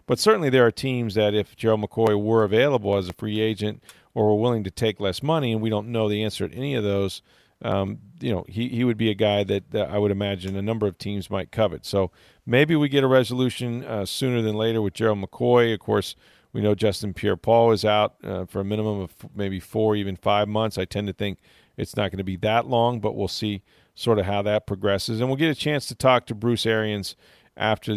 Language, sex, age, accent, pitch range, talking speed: English, male, 40-59, American, 100-115 Hz, 240 wpm